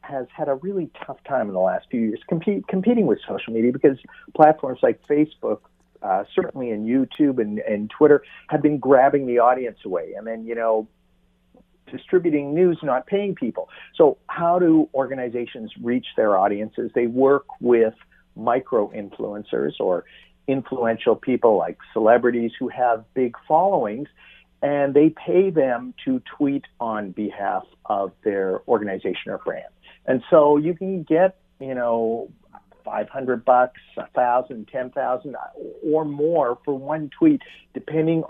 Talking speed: 145 wpm